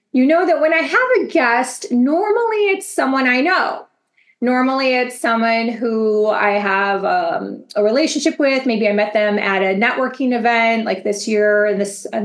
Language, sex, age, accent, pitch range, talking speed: English, female, 30-49, American, 220-295 Hz, 175 wpm